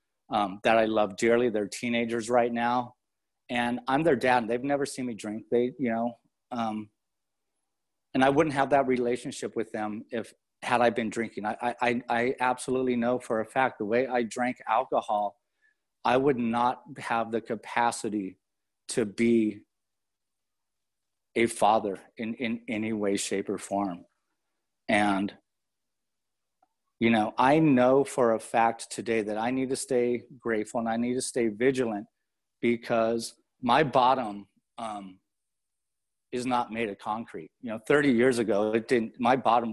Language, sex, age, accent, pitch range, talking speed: English, male, 30-49, American, 105-125 Hz, 155 wpm